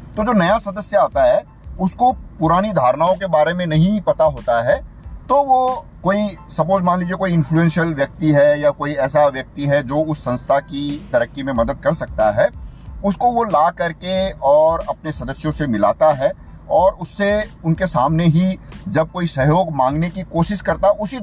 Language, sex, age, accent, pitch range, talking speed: Hindi, male, 50-69, native, 145-200 Hz, 180 wpm